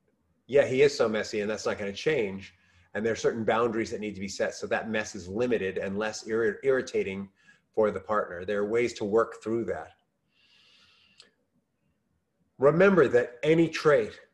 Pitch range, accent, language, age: 100-130 Hz, American, English, 30-49